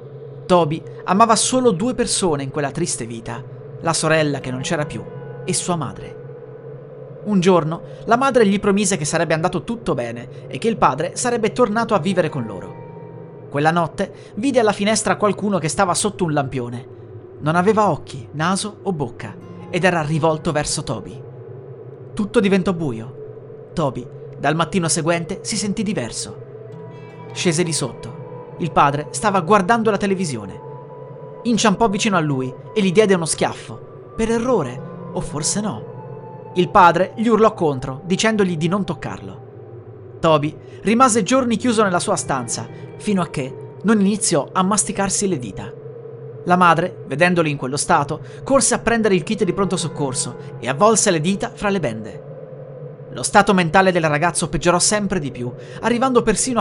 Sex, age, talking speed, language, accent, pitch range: male, 30-49, 160 wpm, Italian, native, 145-200 Hz